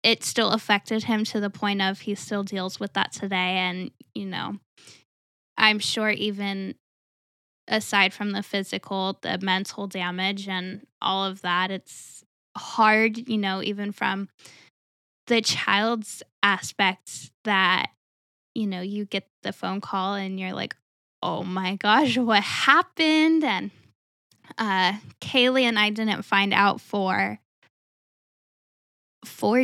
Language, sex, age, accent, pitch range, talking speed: English, female, 10-29, American, 190-220 Hz, 135 wpm